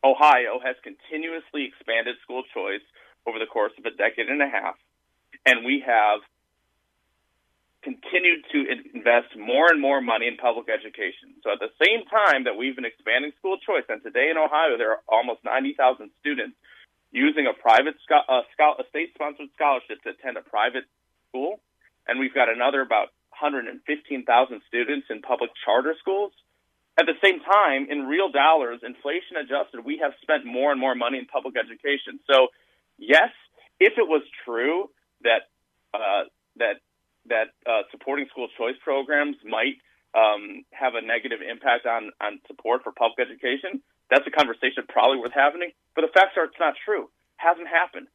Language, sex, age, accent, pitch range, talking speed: English, male, 40-59, American, 120-195 Hz, 165 wpm